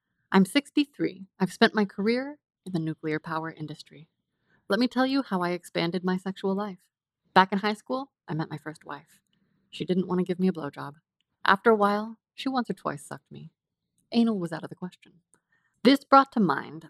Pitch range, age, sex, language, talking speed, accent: 175-240 Hz, 20-39, female, English, 200 wpm, American